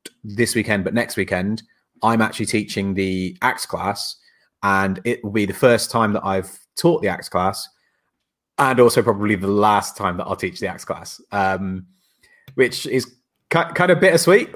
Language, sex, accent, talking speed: English, male, British, 175 wpm